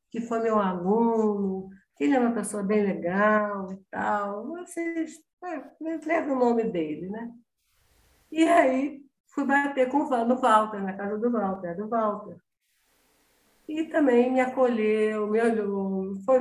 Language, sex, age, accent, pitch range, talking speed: Portuguese, female, 50-69, Brazilian, 195-245 Hz, 140 wpm